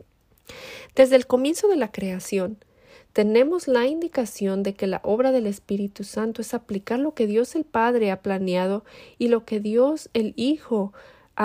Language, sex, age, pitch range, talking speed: Spanish, female, 40-59, 200-255 Hz, 160 wpm